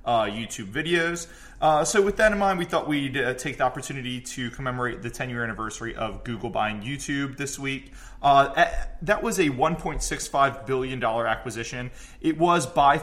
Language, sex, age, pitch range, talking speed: English, male, 20-39, 125-150 Hz, 170 wpm